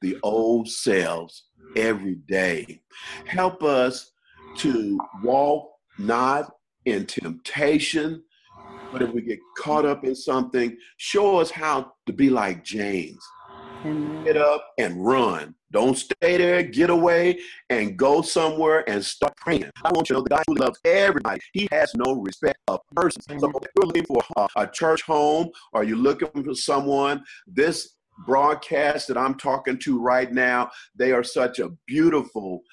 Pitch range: 125-175 Hz